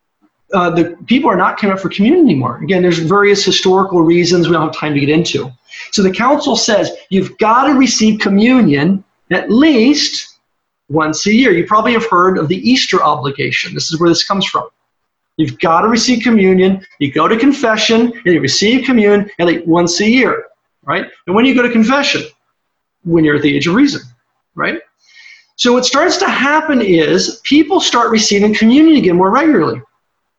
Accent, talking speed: American, 190 wpm